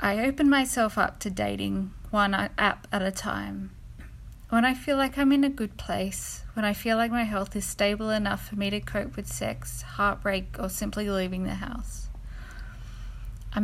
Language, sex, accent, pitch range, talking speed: English, female, Australian, 185-215 Hz, 185 wpm